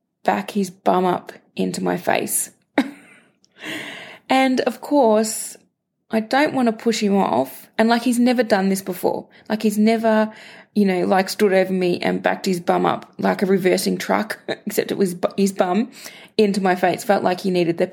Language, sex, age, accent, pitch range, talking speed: English, female, 20-39, Australian, 190-260 Hz, 185 wpm